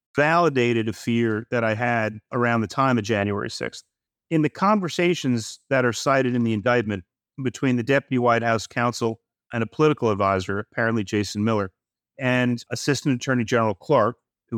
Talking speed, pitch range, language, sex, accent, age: 165 wpm, 105-130 Hz, English, male, American, 30-49